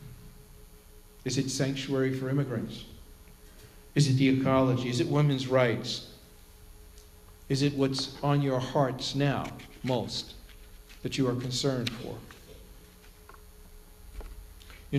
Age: 50-69